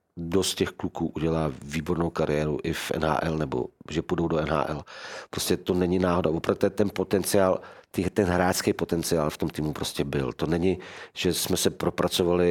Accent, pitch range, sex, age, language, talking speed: native, 80-90 Hz, male, 40-59, Czech, 170 wpm